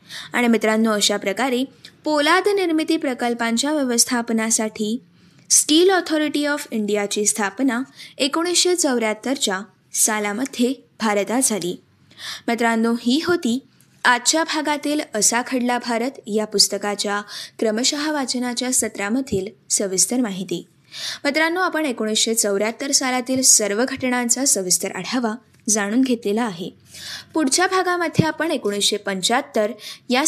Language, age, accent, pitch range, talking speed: Marathi, 20-39, native, 215-290 Hz, 100 wpm